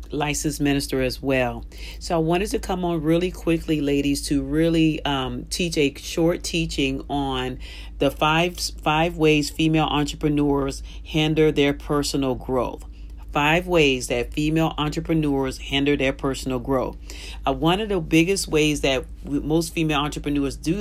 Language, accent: English, American